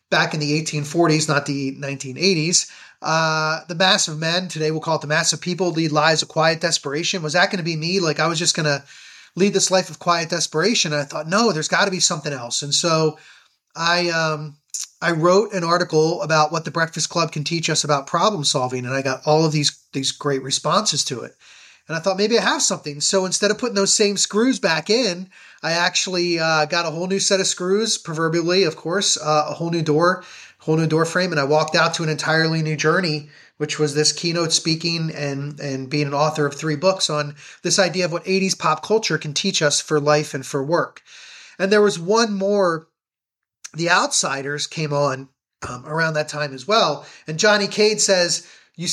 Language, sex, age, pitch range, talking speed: English, male, 30-49, 150-185 Hz, 215 wpm